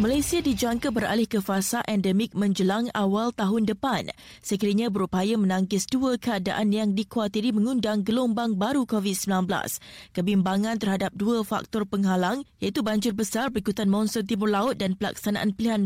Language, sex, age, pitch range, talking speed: Malay, female, 20-39, 200-240 Hz, 135 wpm